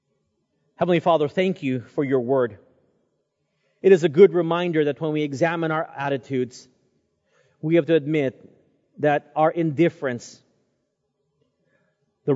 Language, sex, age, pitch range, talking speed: English, male, 40-59, 135-170 Hz, 125 wpm